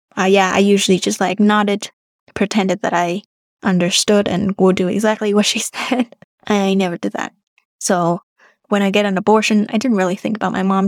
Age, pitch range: 10-29, 190-220 Hz